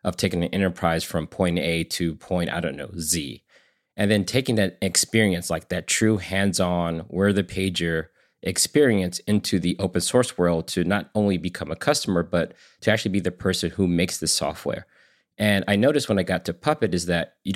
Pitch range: 85-105 Hz